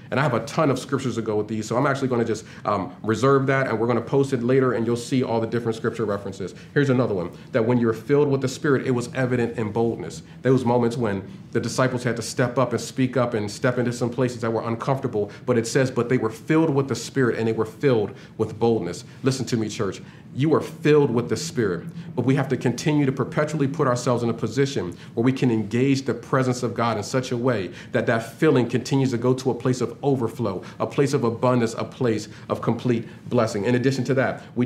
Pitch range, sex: 115-135 Hz, male